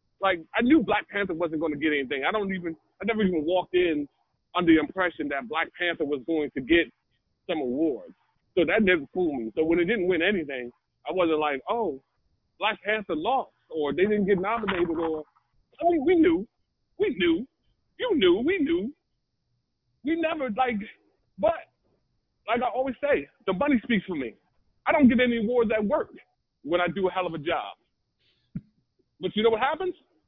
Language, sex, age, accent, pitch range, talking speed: English, male, 30-49, American, 175-245 Hz, 190 wpm